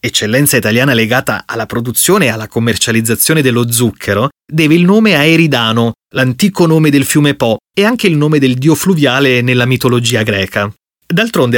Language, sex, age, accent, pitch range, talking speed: Italian, male, 30-49, native, 125-170 Hz, 160 wpm